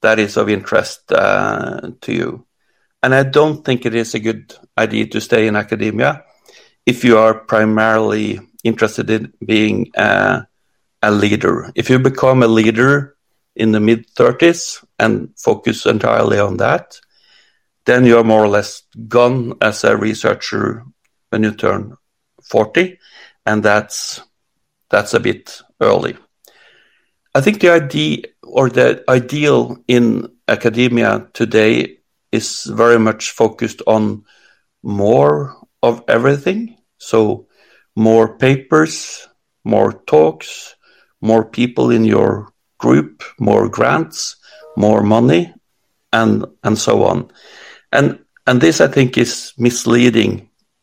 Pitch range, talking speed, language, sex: 110-125 Hz, 125 wpm, English, male